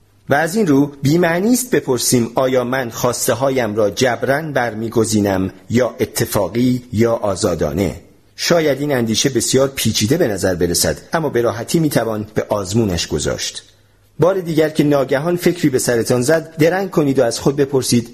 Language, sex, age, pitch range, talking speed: Persian, male, 40-59, 105-140 Hz, 155 wpm